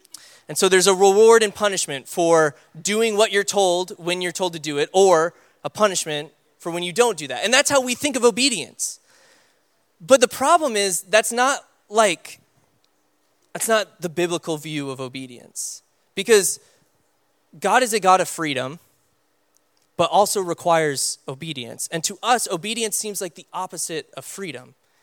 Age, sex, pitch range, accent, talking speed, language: 20-39, male, 140-200 Hz, American, 165 wpm, English